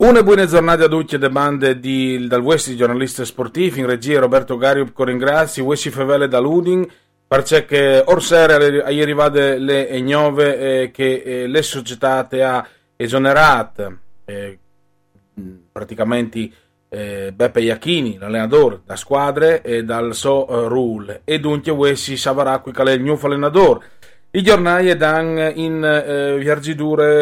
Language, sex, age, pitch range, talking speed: Italian, male, 30-49, 130-155 Hz, 125 wpm